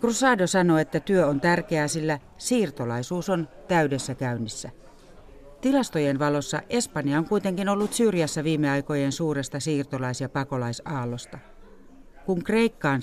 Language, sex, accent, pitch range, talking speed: Finnish, female, native, 130-165 Hz, 115 wpm